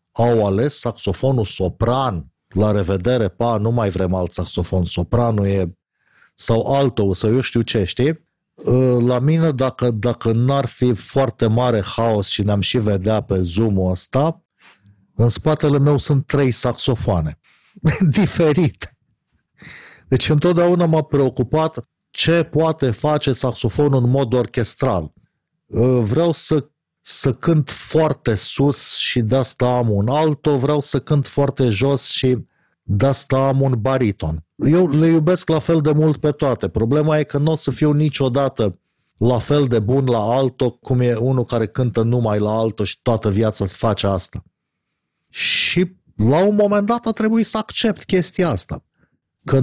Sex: male